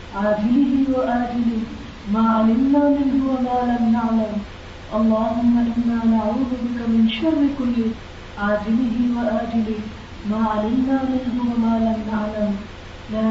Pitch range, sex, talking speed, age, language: 210-240 Hz, female, 105 wpm, 30-49, Urdu